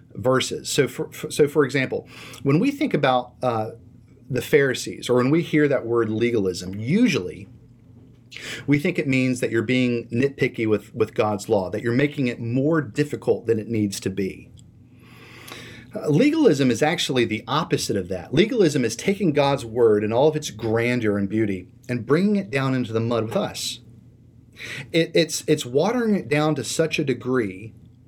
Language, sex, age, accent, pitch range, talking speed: English, male, 40-59, American, 120-155 Hz, 175 wpm